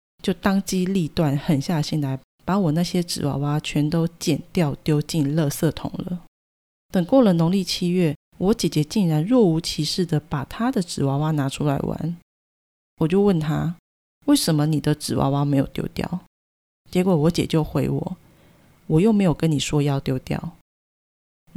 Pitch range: 150-185 Hz